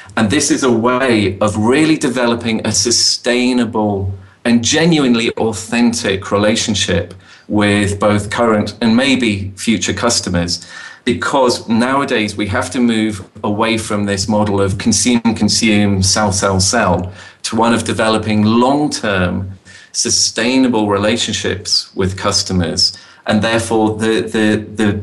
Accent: British